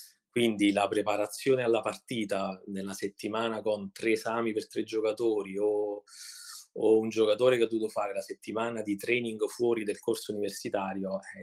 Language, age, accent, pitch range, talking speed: Italian, 30-49, native, 100-115 Hz, 160 wpm